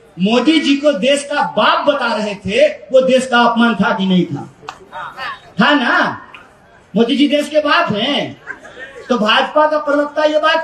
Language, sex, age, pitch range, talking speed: Hindi, male, 40-59, 215-290 Hz, 175 wpm